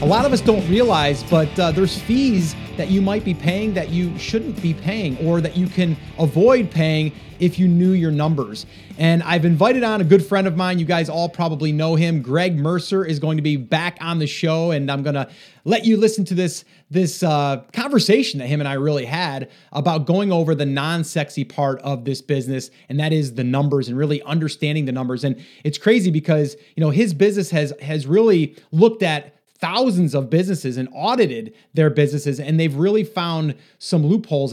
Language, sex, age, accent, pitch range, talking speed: English, male, 30-49, American, 150-195 Hz, 205 wpm